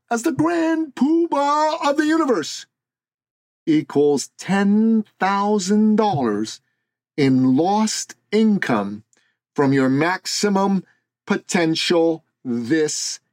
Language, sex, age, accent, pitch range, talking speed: English, male, 40-59, American, 160-260 Hz, 75 wpm